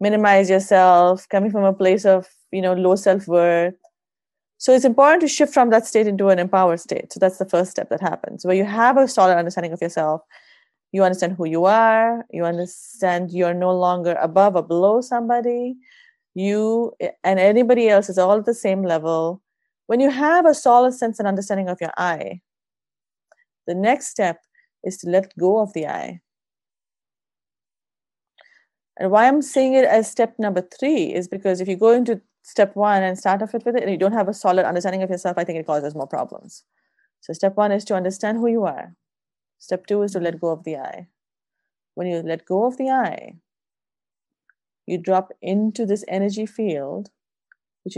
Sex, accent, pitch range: female, Indian, 175-225 Hz